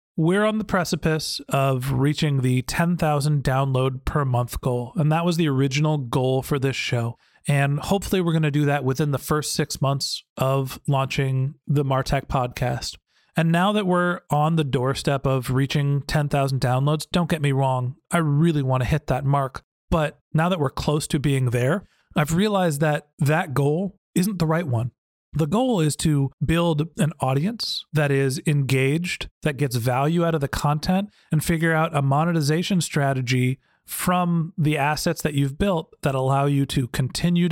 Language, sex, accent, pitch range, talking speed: English, male, American, 135-165 Hz, 180 wpm